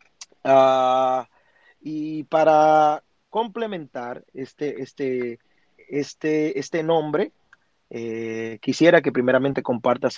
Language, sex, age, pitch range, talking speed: Spanish, male, 30-49, 135-205 Hz, 85 wpm